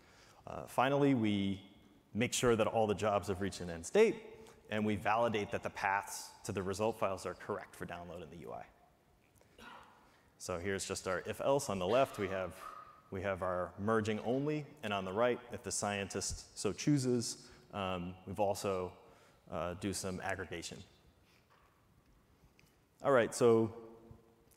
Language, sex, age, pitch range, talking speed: English, male, 30-49, 95-115 Hz, 165 wpm